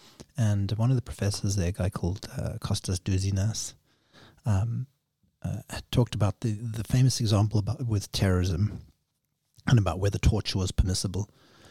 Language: English